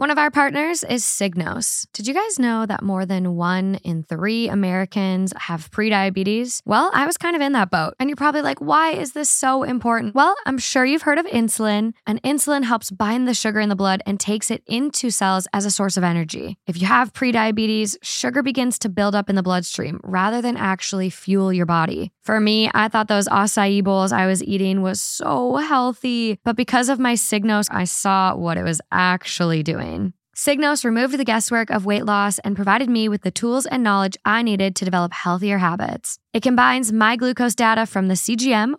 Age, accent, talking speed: 10-29, American, 205 wpm